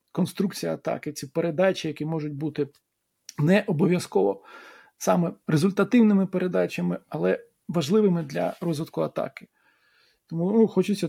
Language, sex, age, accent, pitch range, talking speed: Ukrainian, male, 40-59, native, 155-195 Hz, 110 wpm